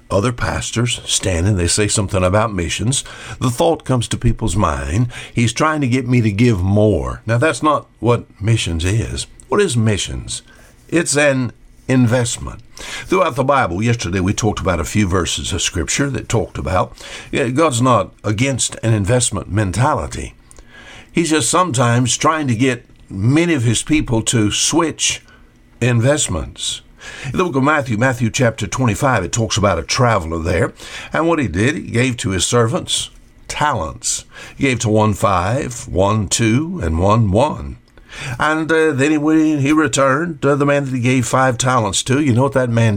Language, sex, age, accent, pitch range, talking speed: English, male, 60-79, American, 105-135 Hz, 170 wpm